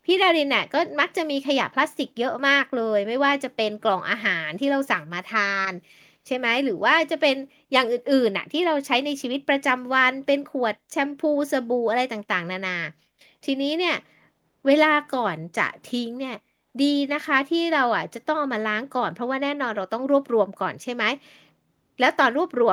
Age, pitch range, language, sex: 20-39, 215-290 Hz, Thai, female